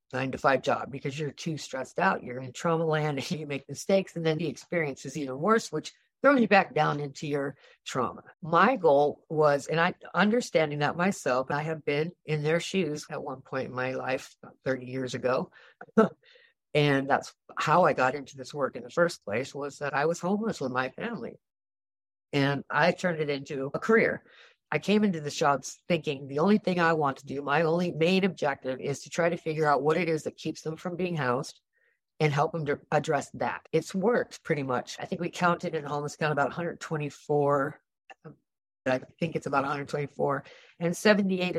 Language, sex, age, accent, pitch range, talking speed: English, female, 50-69, American, 140-170 Hz, 200 wpm